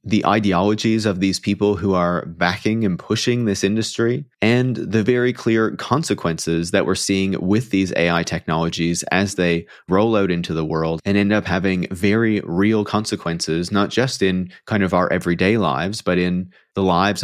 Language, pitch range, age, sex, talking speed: English, 85-105 Hz, 30-49, male, 175 wpm